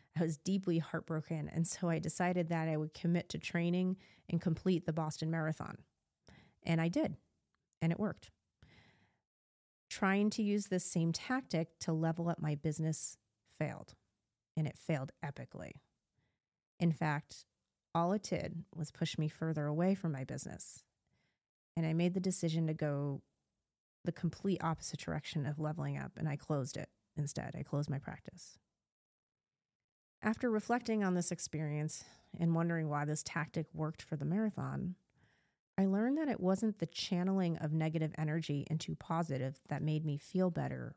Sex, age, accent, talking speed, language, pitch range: female, 30-49, American, 160 wpm, English, 150-180 Hz